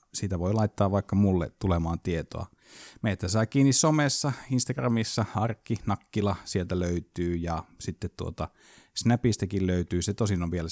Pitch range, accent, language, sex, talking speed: 85-105 Hz, native, Finnish, male, 140 wpm